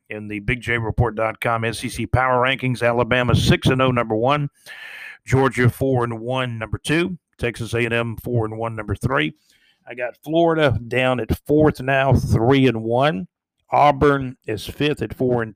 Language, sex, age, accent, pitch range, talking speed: English, male, 50-69, American, 115-135 Hz, 160 wpm